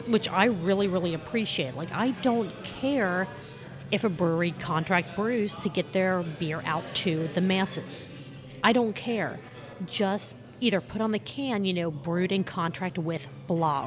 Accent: American